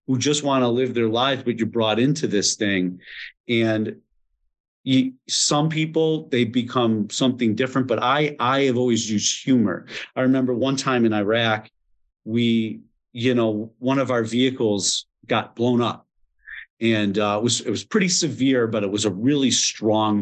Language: English